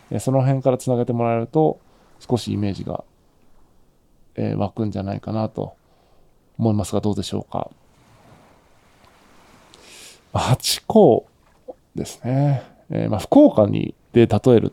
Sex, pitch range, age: male, 110-140 Hz, 20-39